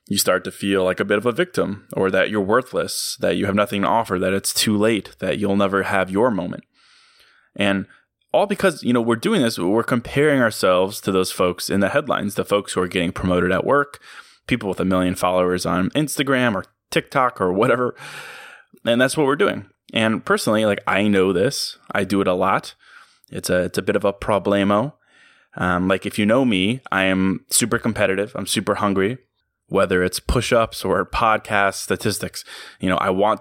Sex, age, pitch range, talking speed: male, 20-39, 95-110 Hz, 205 wpm